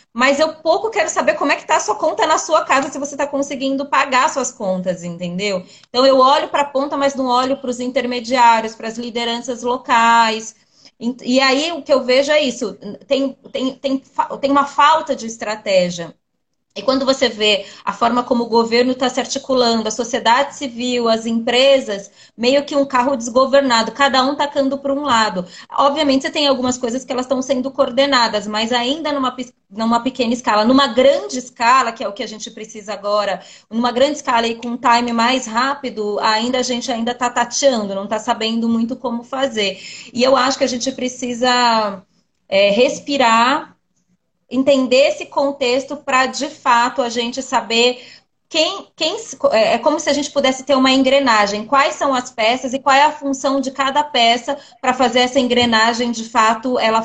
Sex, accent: female, Brazilian